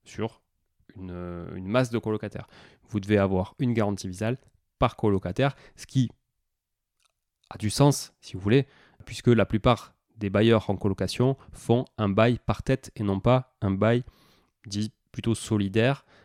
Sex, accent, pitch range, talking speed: male, French, 100-125 Hz, 155 wpm